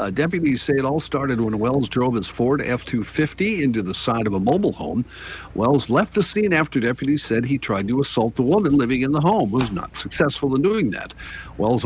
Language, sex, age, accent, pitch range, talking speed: English, male, 50-69, American, 110-145 Hz, 220 wpm